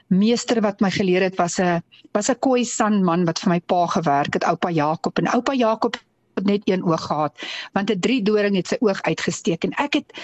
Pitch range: 185-240 Hz